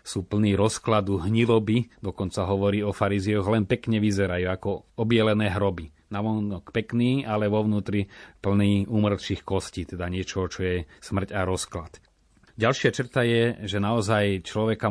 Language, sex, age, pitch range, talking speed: Slovak, male, 30-49, 90-105 Hz, 140 wpm